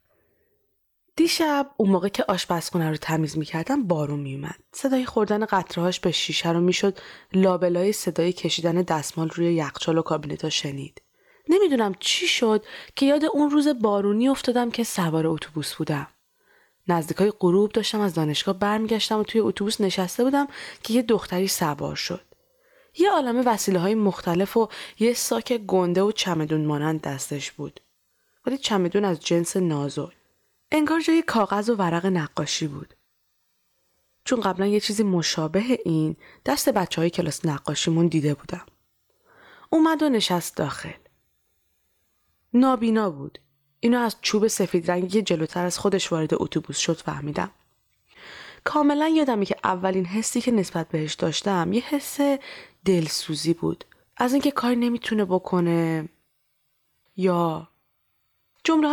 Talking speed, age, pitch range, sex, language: 135 wpm, 20-39, 160-235 Hz, female, Persian